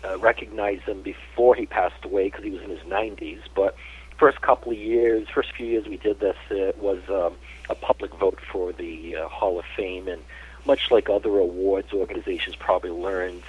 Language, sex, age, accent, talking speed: English, male, 50-69, American, 190 wpm